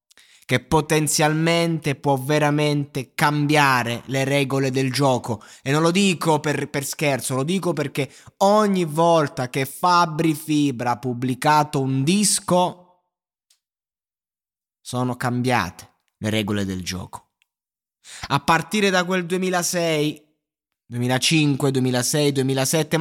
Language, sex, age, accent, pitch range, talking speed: Italian, male, 20-39, native, 125-155 Hz, 110 wpm